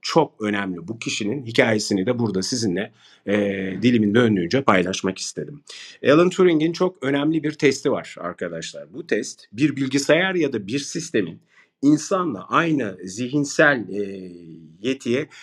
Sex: male